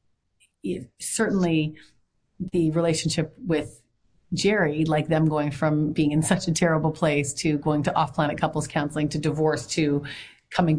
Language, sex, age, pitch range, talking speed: English, female, 30-49, 140-155 Hz, 145 wpm